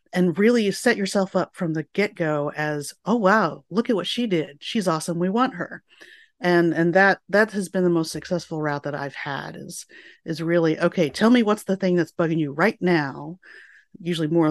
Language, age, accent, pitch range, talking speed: English, 30-49, American, 150-190 Hz, 205 wpm